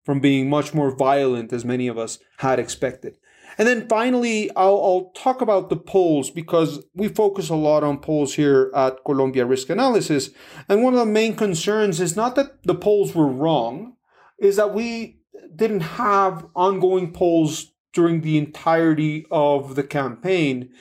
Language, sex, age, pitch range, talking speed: English, male, 30-49, 145-185 Hz, 165 wpm